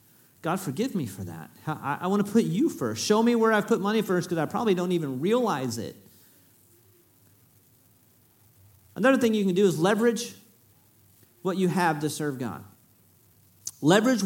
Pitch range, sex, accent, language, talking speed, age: 130-210 Hz, male, American, English, 165 wpm, 40-59